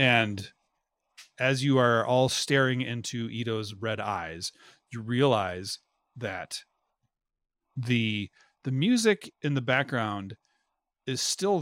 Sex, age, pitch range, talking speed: male, 40-59, 110-140 Hz, 110 wpm